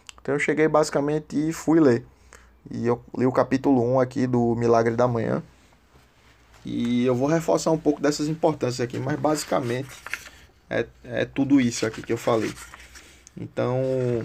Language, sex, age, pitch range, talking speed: Portuguese, male, 20-39, 110-140 Hz, 160 wpm